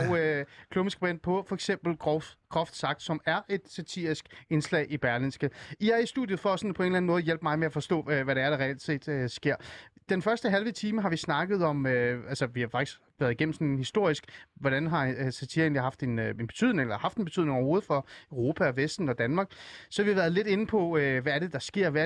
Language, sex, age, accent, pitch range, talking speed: Danish, male, 30-49, native, 140-195 Hz, 250 wpm